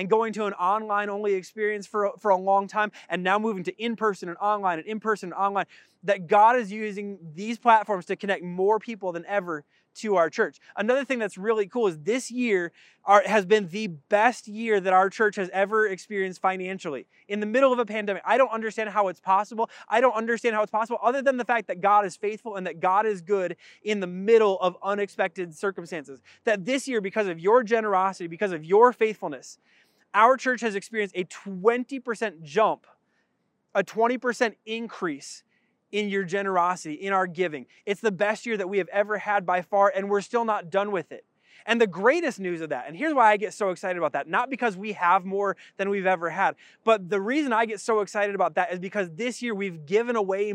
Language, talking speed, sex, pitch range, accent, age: English, 210 wpm, male, 190-220 Hz, American, 20-39